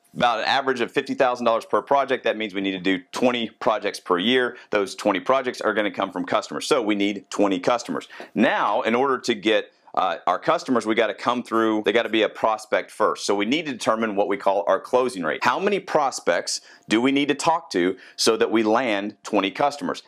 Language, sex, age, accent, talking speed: English, male, 40-59, American, 225 wpm